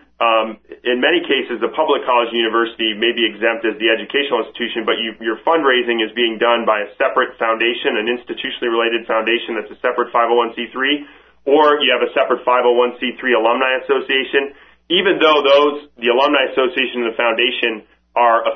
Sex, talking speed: male, 165 wpm